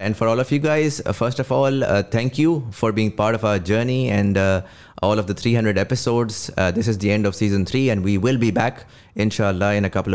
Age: 20-39